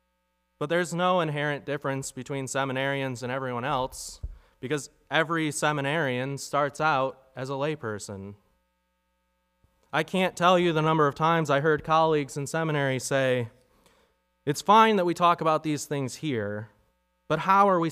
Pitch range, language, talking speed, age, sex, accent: 100-150 Hz, English, 150 wpm, 20-39, male, American